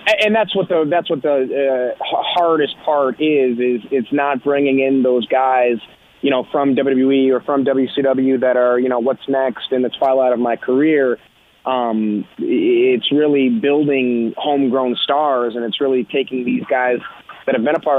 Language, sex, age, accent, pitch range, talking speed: English, male, 20-39, American, 120-135 Hz, 180 wpm